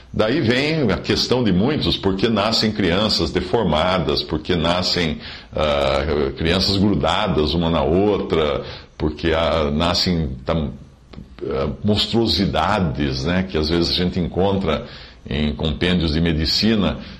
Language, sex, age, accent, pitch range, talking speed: English, male, 50-69, Brazilian, 80-125 Hz, 120 wpm